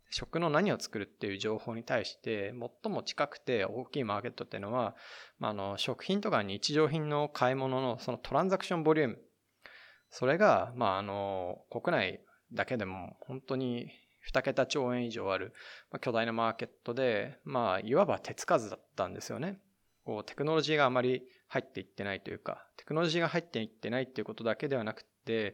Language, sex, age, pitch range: Japanese, male, 20-39, 105-150 Hz